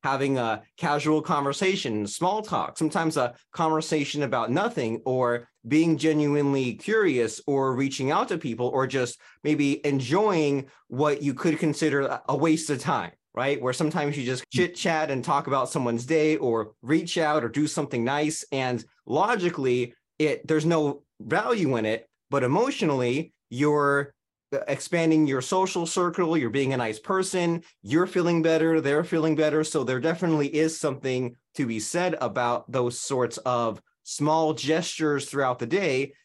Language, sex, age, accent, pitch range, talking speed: English, male, 30-49, American, 130-160 Hz, 155 wpm